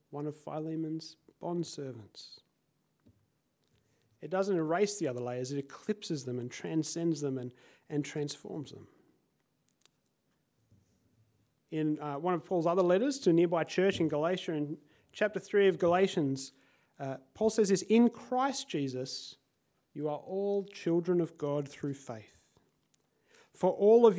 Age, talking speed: 30-49, 140 wpm